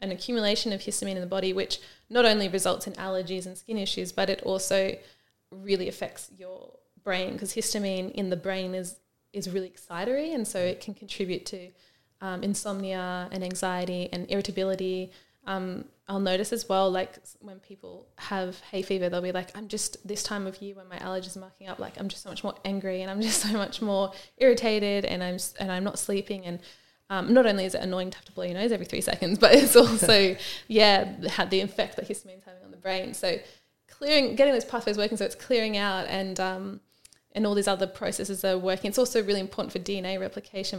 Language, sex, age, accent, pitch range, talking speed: English, female, 20-39, Australian, 185-215 Hz, 210 wpm